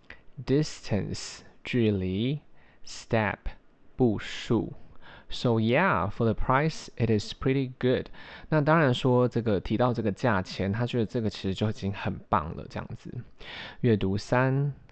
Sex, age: male, 20-39